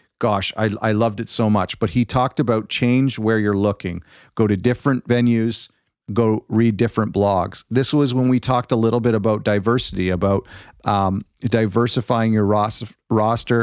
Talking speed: 165 wpm